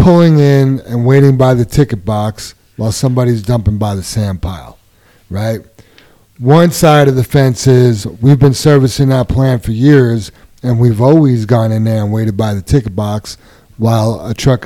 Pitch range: 110-145 Hz